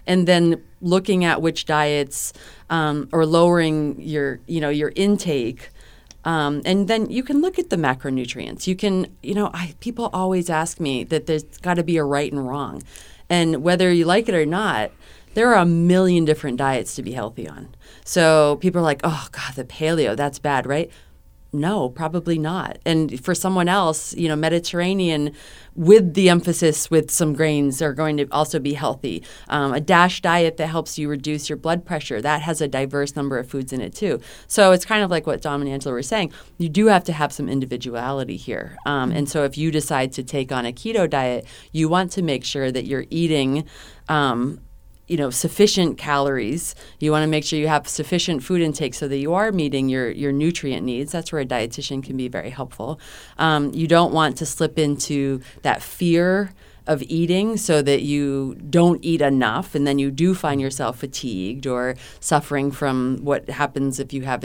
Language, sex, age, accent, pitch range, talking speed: English, female, 30-49, American, 135-170 Hz, 200 wpm